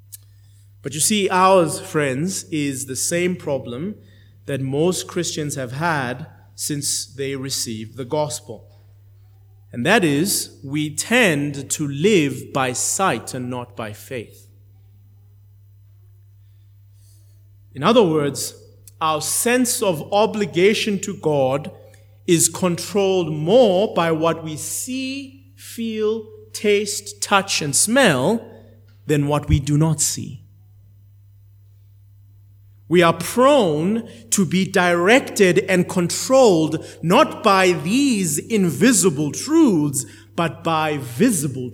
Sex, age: male, 30-49